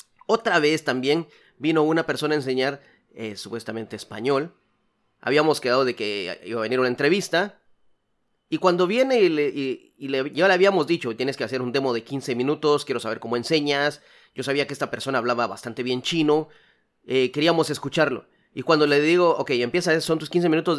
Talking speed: 190 wpm